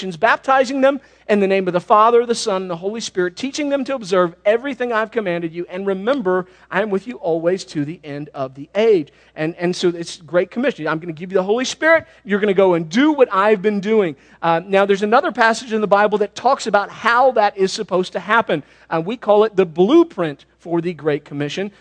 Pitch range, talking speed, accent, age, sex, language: 165-230 Hz, 235 wpm, American, 40-59, male, English